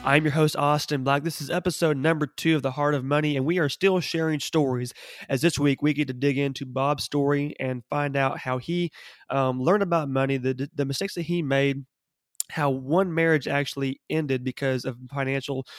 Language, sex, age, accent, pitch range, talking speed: English, male, 20-39, American, 130-150 Hz, 205 wpm